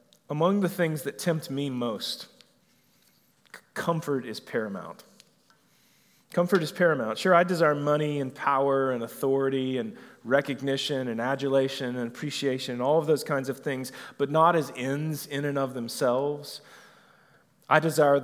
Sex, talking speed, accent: male, 145 wpm, American